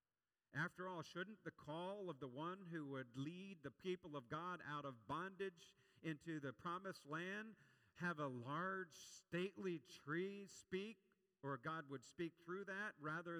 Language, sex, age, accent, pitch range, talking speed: English, male, 50-69, American, 130-170 Hz, 155 wpm